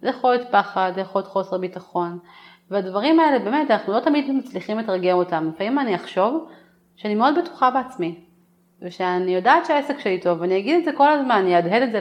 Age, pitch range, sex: 30-49, 180-255 Hz, female